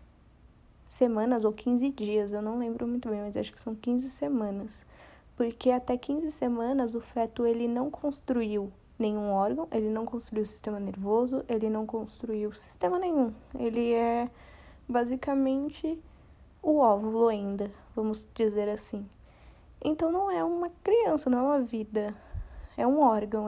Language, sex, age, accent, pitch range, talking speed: Portuguese, female, 10-29, Brazilian, 215-265 Hz, 150 wpm